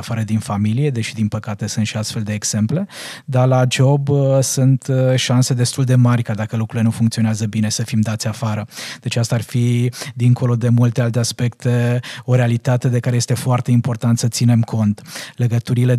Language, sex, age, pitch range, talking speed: Romanian, male, 20-39, 115-130 Hz, 185 wpm